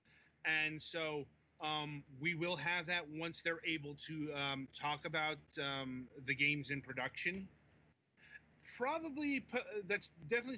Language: English